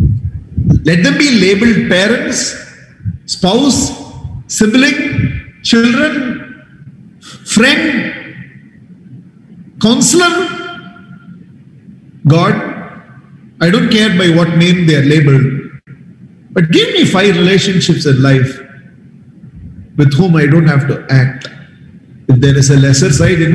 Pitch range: 160-255 Hz